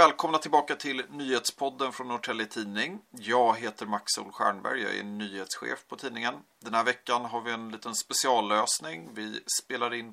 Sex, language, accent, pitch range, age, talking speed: male, Swedish, native, 105-130 Hz, 30-49, 165 wpm